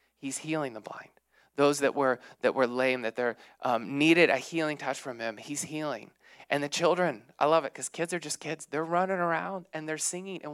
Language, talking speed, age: English, 220 wpm, 20-39